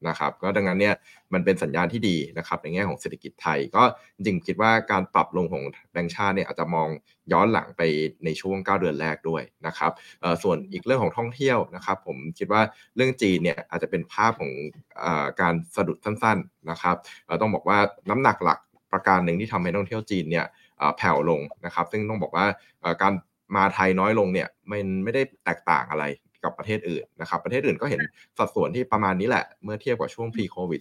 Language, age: Thai, 20-39